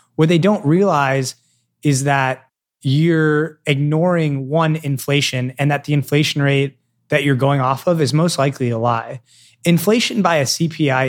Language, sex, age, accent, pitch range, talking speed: English, male, 20-39, American, 125-155 Hz, 155 wpm